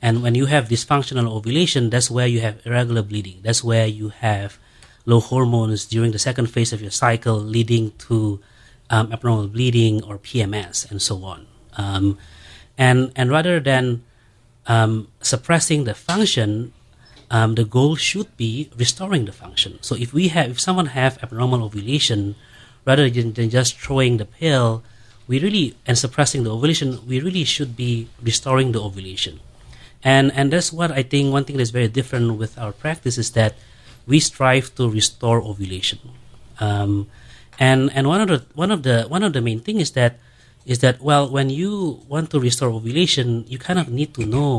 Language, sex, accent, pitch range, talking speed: English, male, Indonesian, 110-135 Hz, 180 wpm